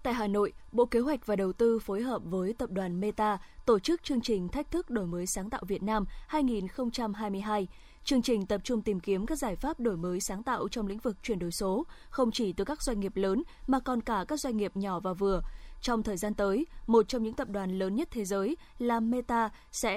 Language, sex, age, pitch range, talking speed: Vietnamese, female, 20-39, 200-255 Hz, 235 wpm